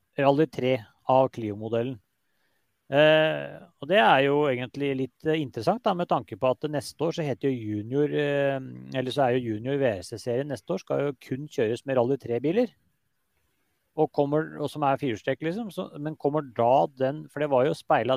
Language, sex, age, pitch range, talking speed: English, male, 30-49, 115-150 Hz, 195 wpm